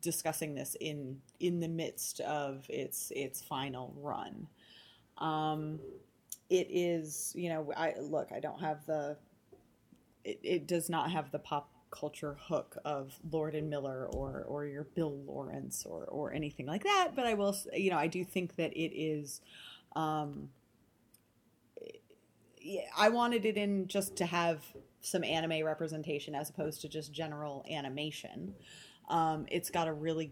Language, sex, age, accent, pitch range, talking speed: English, female, 30-49, American, 145-170 Hz, 155 wpm